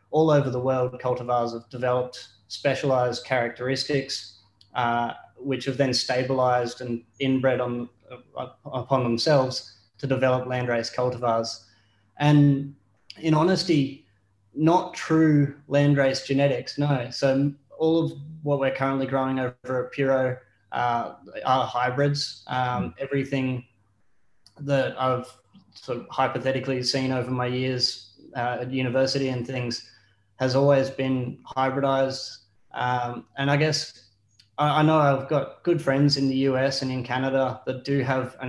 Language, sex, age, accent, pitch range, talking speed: English, male, 20-39, Australian, 120-135 Hz, 135 wpm